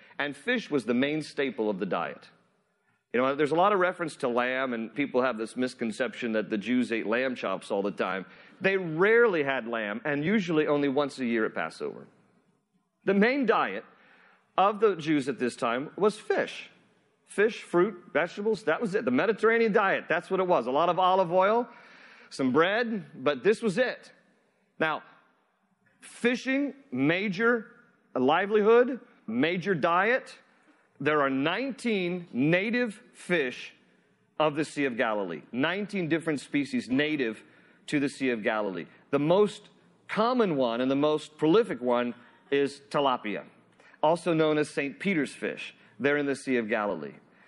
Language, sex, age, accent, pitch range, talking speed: English, male, 40-59, American, 130-210 Hz, 160 wpm